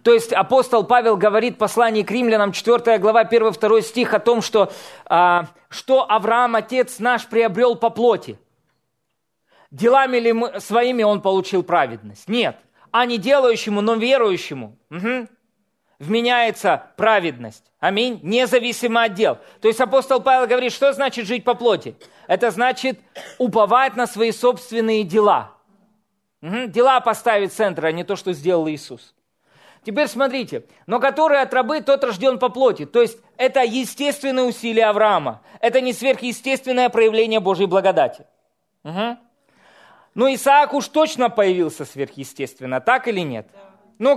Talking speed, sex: 140 wpm, male